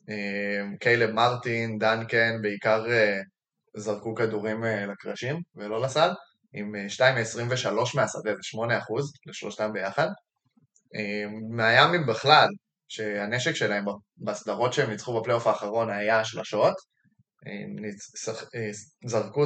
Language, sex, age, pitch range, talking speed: Hebrew, male, 10-29, 105-115 Hz, 85 wpm